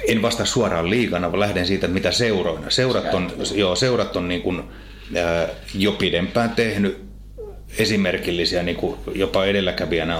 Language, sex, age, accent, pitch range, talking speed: Finnish, male, 30-49, native, 85-100 Hz, 140 wpm